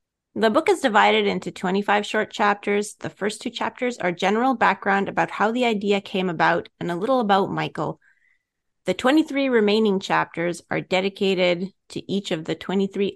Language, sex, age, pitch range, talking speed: English, female, 30-49, 185-230 Hz, 170 wpm